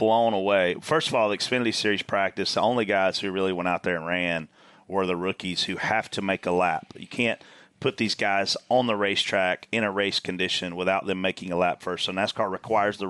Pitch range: 95-130 Hz